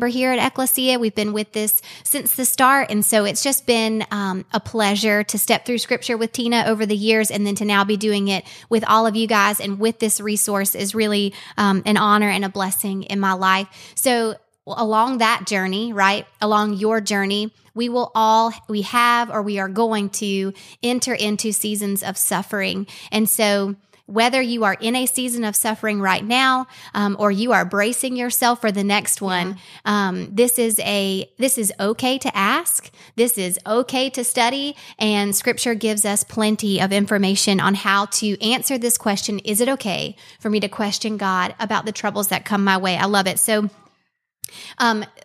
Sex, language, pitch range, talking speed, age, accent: female, English, 200-230 Hz, 195 wpm, 20-39, American